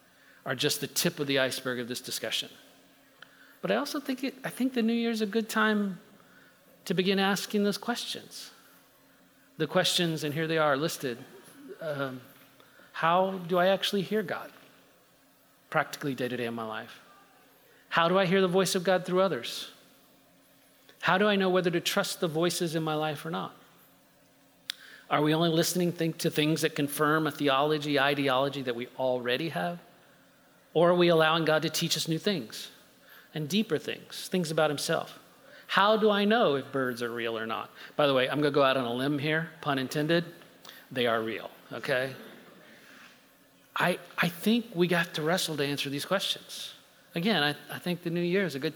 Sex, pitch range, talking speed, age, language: male, 145-185 Hz, 190 wpm, 40-59, English